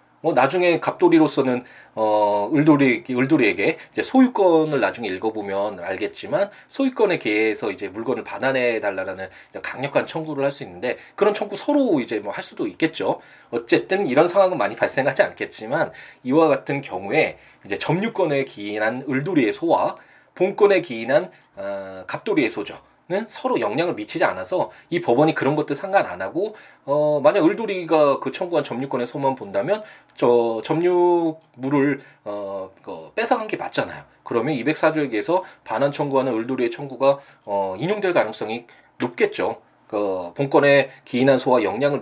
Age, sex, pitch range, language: 20-39, male, 120-190 Hz, Korean